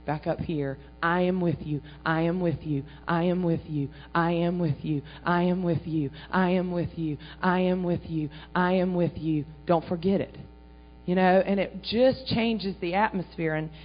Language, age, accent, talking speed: English, 40-59, American, 210 wpm